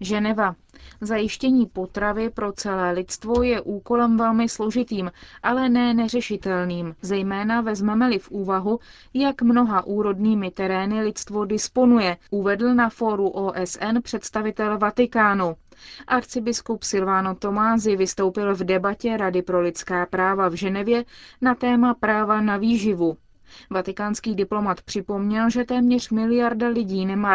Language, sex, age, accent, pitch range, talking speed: Czech, female, 20-39, native, 195-235 Hz, 120 wpm